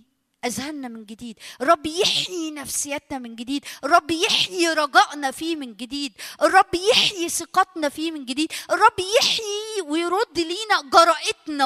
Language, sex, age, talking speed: Arabic, female, 20-39, 130 wpm